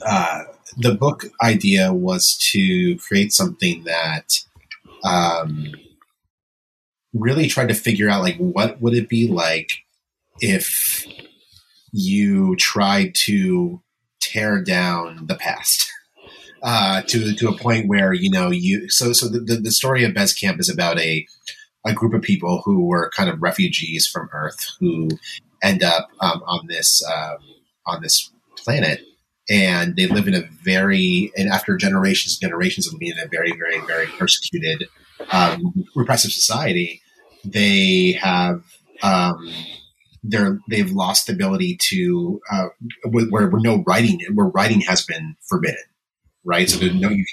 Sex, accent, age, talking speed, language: male, American, 30-49, 145 wpm, English